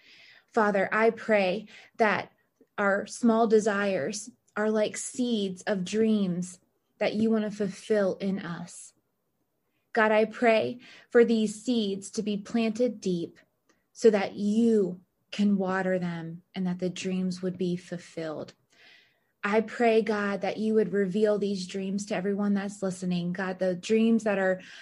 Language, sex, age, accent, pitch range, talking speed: English, female, 20-39, American, 185-220 Hz, 145 wpm